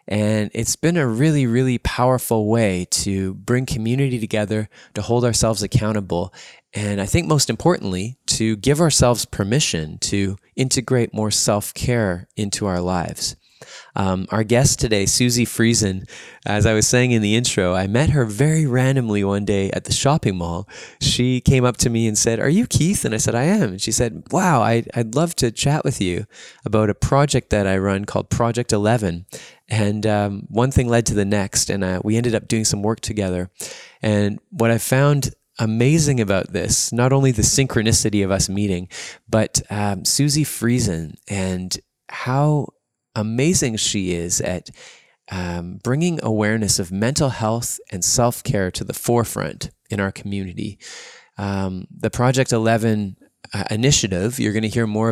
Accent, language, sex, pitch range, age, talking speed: American, English, male, 100-125 Hz, 20-39, 170 wpm